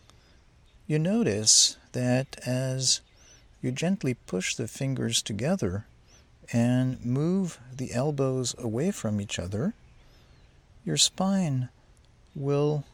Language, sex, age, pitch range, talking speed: English, male, 50-69, 110-150 Hz, 95 wpm